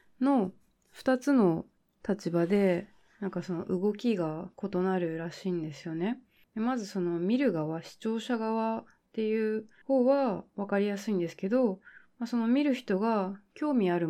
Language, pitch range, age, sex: Japanese, 175-230 Hz, 20-39, female